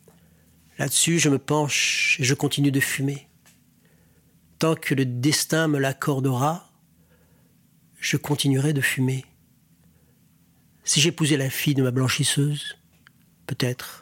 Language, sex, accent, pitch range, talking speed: French, male, French, 135-150 Hz, 115 wpm